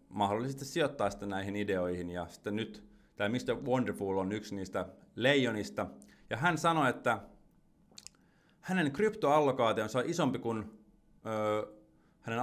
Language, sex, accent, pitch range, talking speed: Finnish, male, native, 100-135 Hz, 125 wpm